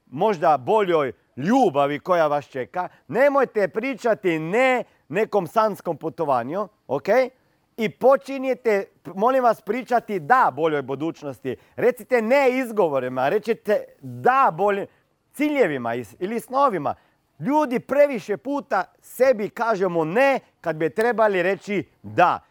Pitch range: 155-245 Hz